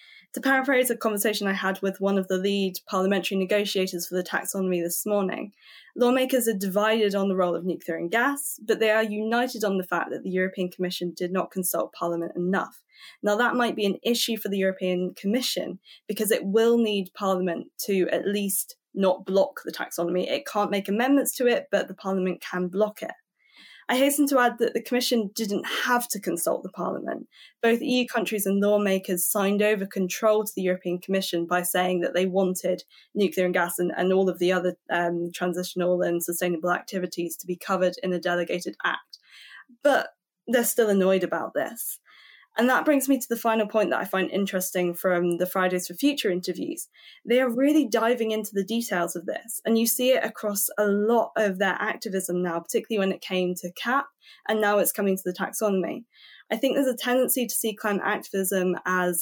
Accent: British